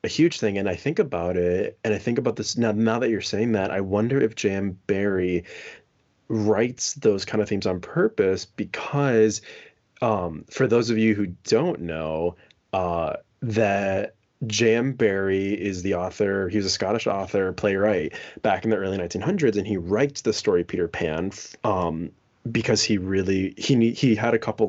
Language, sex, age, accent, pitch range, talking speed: English, male, 20-39, American, 95-110 Hz, 175 wpm